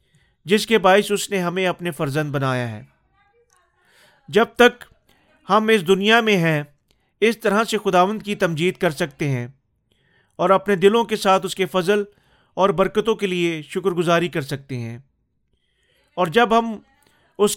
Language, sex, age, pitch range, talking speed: Urdu, male, 40-59, 165-205 Hz, 160 wpm